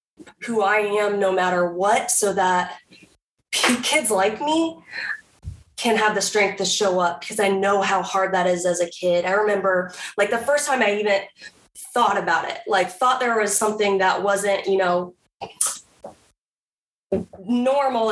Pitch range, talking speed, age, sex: 185-235 Hz, 160 wpm, 20-39, female